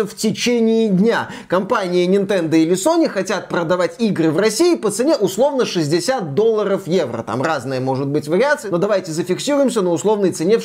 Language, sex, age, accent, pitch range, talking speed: Russian, male, 20-39, native, 175-230 Hz, 170 wpm